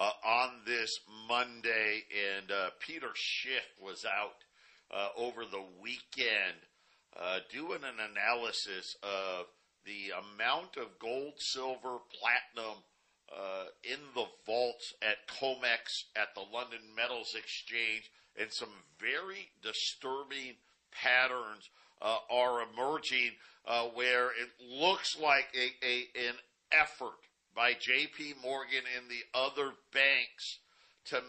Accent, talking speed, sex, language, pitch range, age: American, 115 wpm, male, English, 120-155 Hz, 50-69